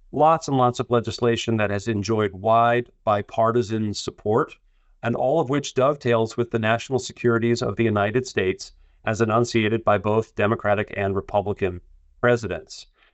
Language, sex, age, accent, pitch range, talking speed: English, male, 40-59, American, 100-120 Hz, 145 wpm